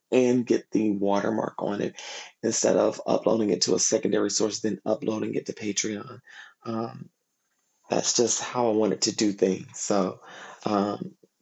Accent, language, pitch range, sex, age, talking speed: American, English, 110-140 Hz, male, 30-49, 160 wpm